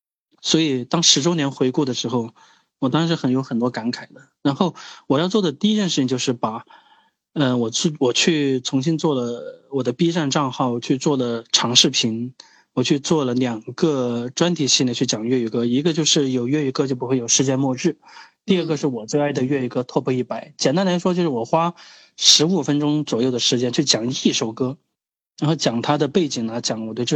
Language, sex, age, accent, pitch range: Chinese, male, 20-39, native, 125-165 Hz